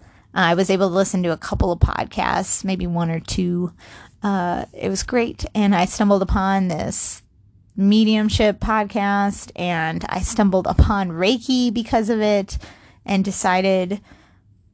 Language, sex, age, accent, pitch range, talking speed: English, female, 20-39, American, 175-220 Hz, 145 wpm